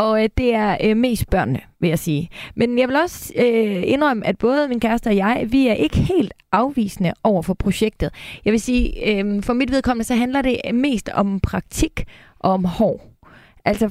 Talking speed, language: 200 wpm, Danish